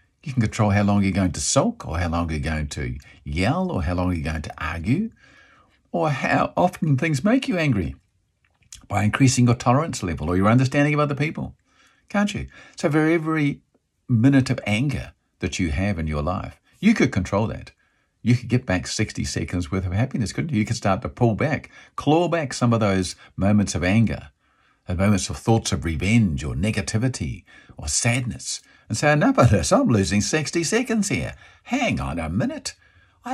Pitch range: 90-130 Hz